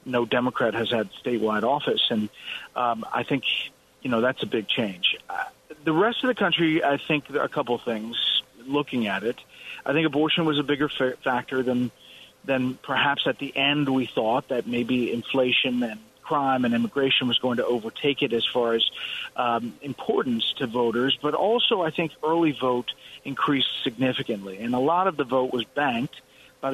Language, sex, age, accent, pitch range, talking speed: English, male, 40-59, American, 125-145 Hz, 180 wpm